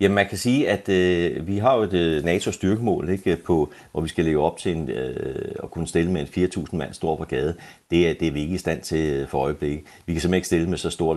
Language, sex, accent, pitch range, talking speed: Danish, male, native, 80-100 Hz, 270 wpm